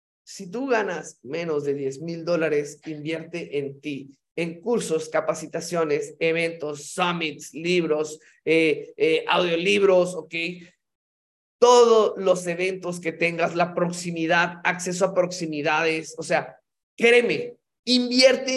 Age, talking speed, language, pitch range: 30-49, 115 wpm, Spanish, 165-200 Hz